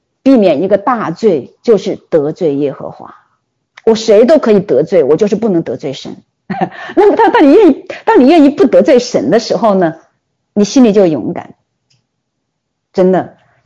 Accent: native